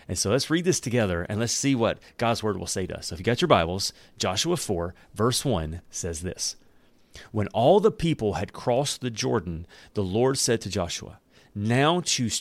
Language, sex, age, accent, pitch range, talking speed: English, male, 40-59, American, 95-130 Hz, 210 wpm